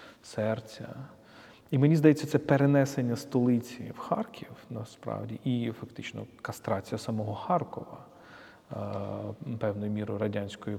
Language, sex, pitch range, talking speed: Ukrainian, male, 105-130 Hz, 100 wpm